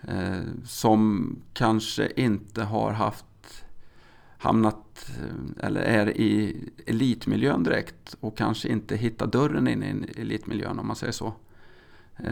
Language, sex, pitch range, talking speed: Swedish, male, 105-115 Hz, 125 wpm